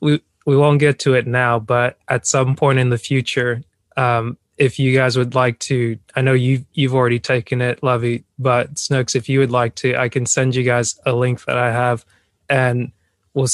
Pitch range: 120-135 Hz